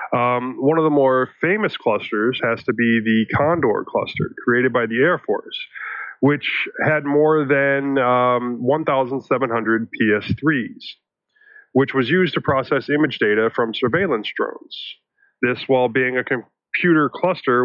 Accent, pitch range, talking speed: American, 115-165 Hz, 140 wpm